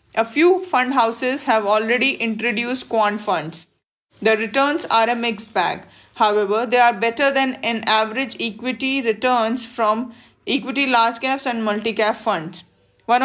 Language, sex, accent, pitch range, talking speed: English, female, Indian, 220-265 Hz, 145 wpm